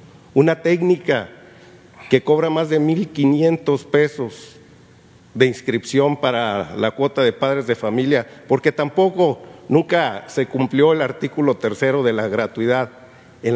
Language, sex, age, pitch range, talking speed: Spanish, male, 50-69, 130-155 Hz, 135 wpm